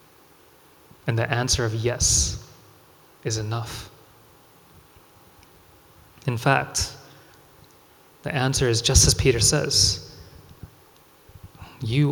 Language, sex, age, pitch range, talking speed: English, male, 20-39, 115-145 Hz, 85 wpm